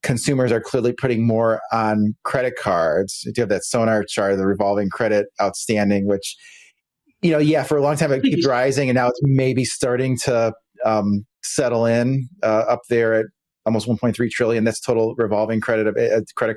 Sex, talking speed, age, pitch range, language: male, 180 wpm, 30-49, 110-125 Hz, English